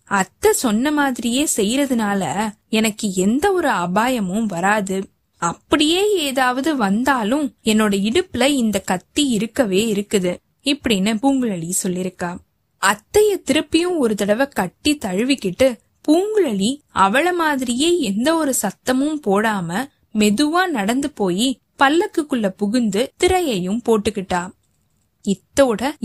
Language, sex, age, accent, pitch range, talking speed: Tamil, female, 20-39, native, 195-275 Hz, 95 wpm